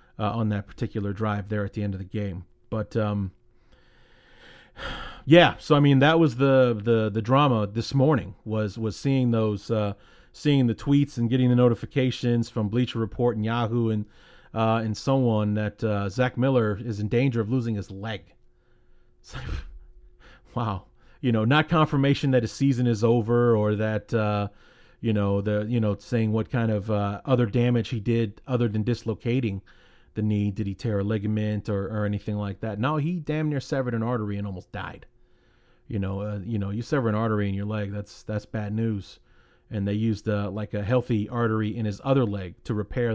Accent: American